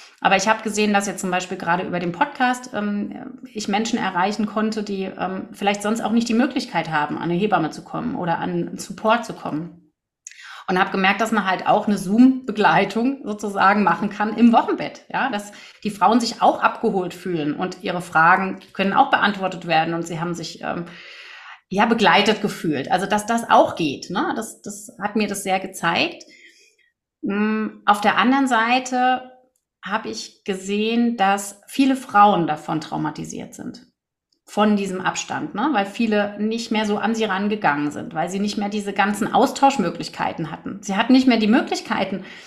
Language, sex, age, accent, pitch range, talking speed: German, female, 30-49, German, 190-225 Hz, 180 wpm